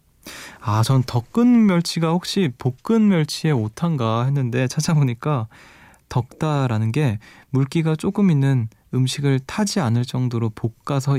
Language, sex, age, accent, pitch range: Korean, male, 20-39, native, 110-150 Hz